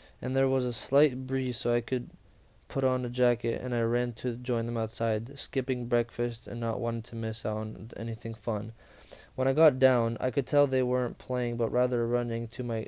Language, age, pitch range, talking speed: English, 20-39, 115-130 Hz, 215 wpm